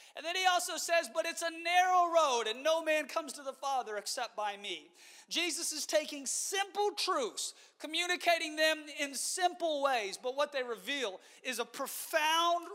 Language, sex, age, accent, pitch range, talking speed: English, male, 30-49, American, 260-335 Hz, 175 wpm